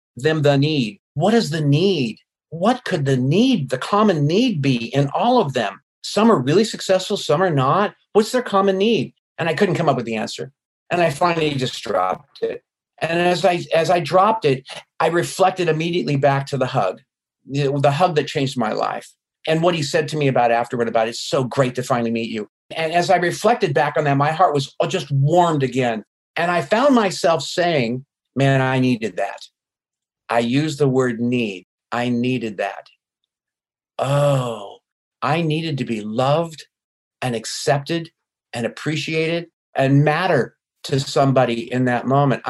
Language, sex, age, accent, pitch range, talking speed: English, male, 50-69, American, 135-175 Hz, 180 wpm